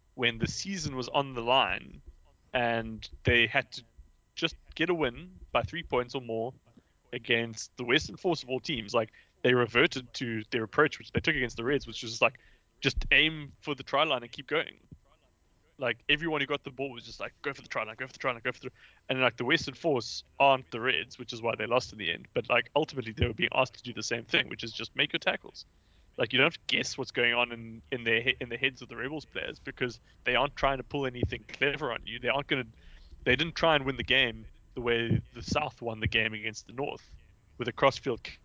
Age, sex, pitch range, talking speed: 20-39, male, 115-130 Hz, 250 wpm